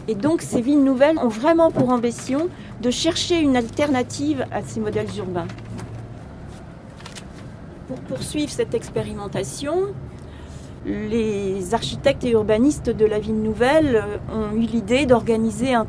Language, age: French, 40-59